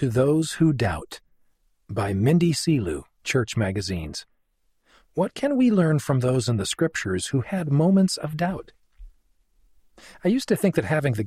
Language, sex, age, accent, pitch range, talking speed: English, male, 40-59, American, 105-155 Hz, 160 wpm